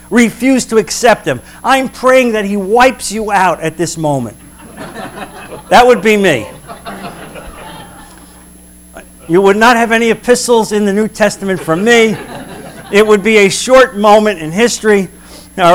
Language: English